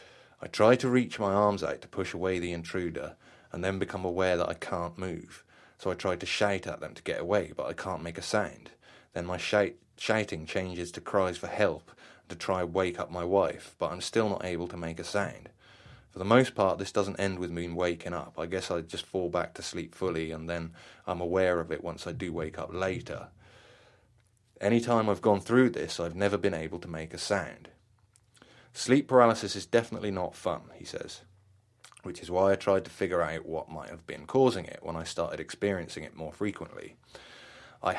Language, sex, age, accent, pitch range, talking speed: English, male, 30-49, British, 85-105 Hz, 215 wpm